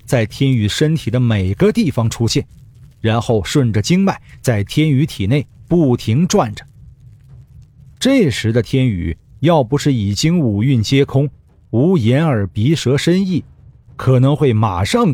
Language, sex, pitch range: Chinese, male, 105-145 Hz